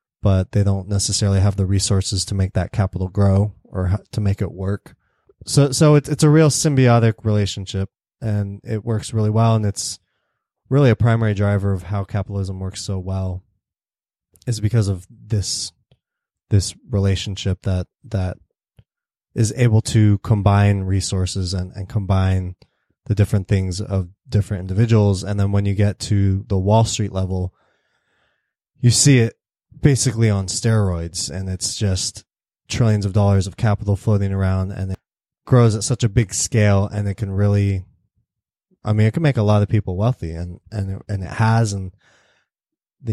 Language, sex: English, male